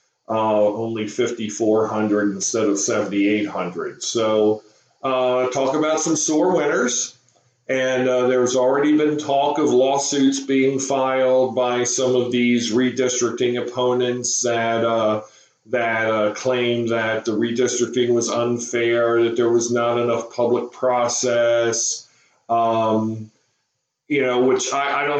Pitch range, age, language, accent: 115-135 Hz, 40-59, English, American